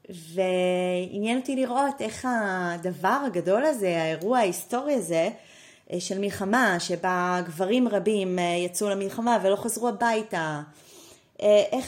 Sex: female